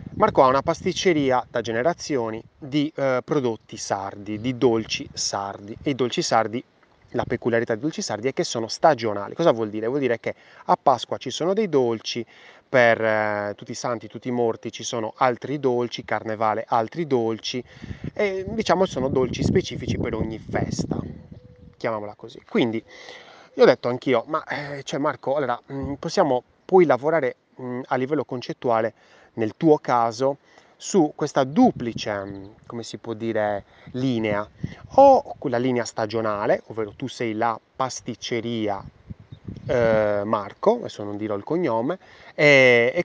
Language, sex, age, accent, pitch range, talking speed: Italian, male, 30-49, native, 110-150 Hz, 150 wpm